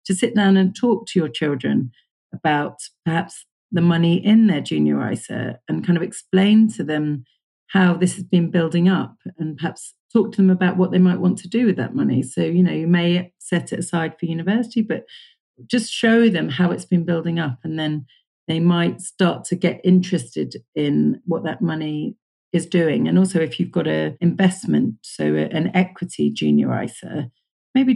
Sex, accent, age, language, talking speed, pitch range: female, British, 40-59, English, 190 wpm, 155-190 Hz